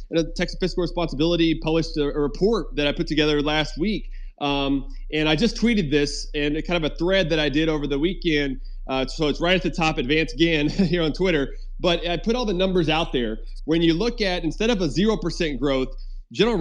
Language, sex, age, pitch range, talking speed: English, male, 30-49, 150-185 Hz, 215 wpm